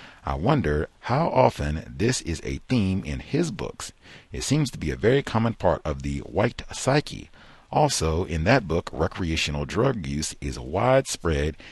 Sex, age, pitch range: male, 40-59, 75-100 Hz